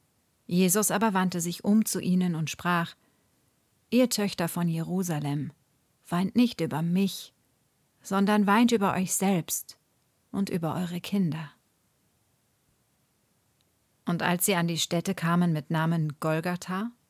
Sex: female